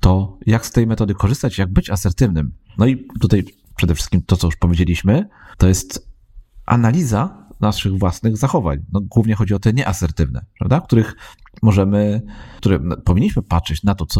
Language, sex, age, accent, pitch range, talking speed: Polish, male, 40-59, native, 90-110 Hz, 165 wpm